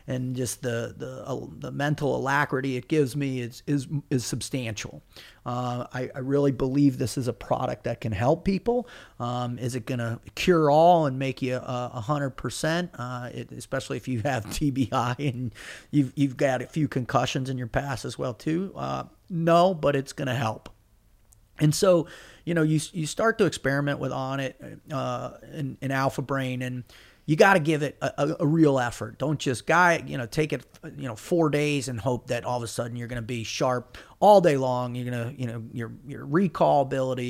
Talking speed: 210 wpm